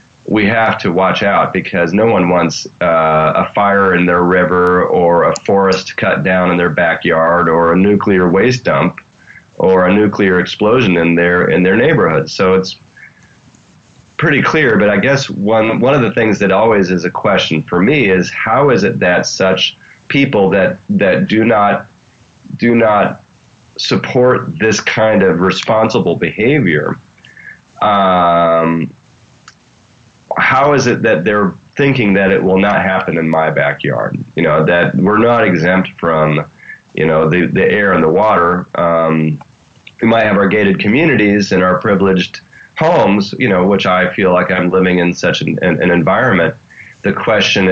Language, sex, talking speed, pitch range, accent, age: English, male, 165 wpm, 90-100 Hz, American, 30-49